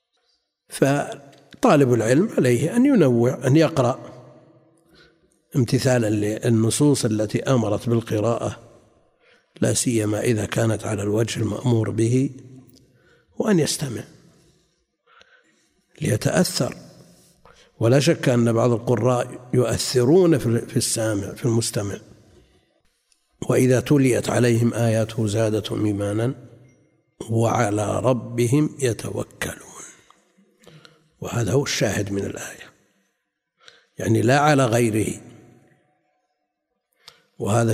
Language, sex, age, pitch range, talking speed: Arabic, male, 60-79, 115-145 Hz, 85 wpm